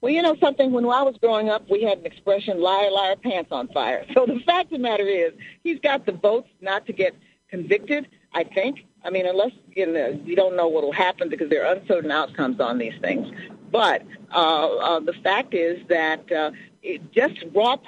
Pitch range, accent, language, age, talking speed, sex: 175-240 Hz, American, English, 50-69, 210 wpm, female